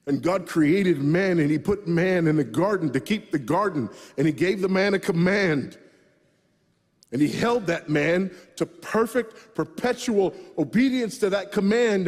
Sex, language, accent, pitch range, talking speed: male, English, American, 195-265 Hz, 170 wpm